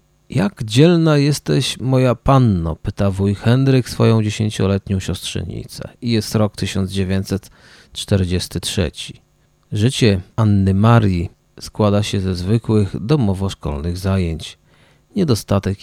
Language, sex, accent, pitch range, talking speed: Polish, male, native, 100-125 Hz, 95 wpm